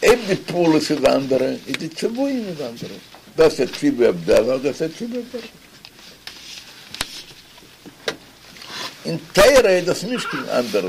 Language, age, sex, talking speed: Hebrew, 60-79, male, 100 wpm